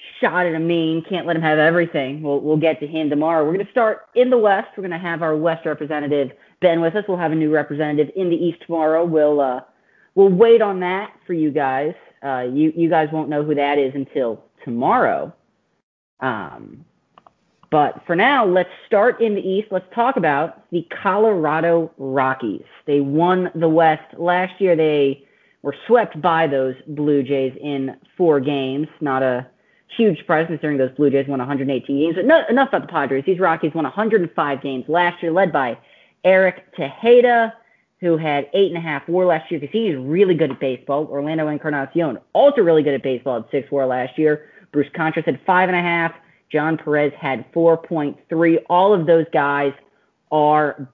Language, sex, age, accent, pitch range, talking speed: English, female, 30-49, American, 145-175 Hz, 190 wpm